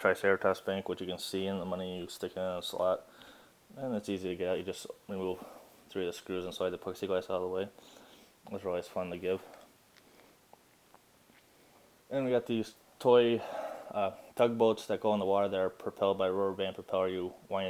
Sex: male